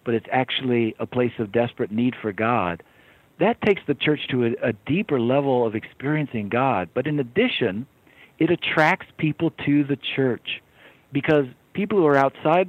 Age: 50-69